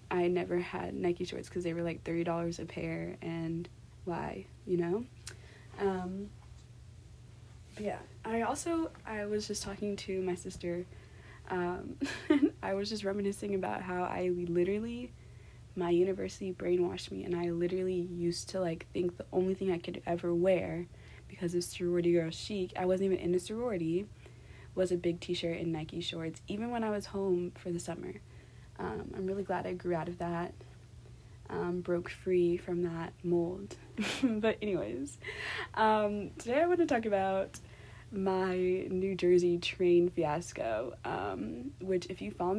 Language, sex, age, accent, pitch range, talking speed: English, female, 20-39, American, 170-195 Hz, 160 wpm